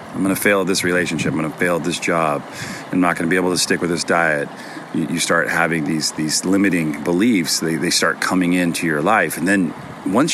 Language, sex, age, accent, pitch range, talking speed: English, male, 40-59, American, 80-95 Hz, 230 wpm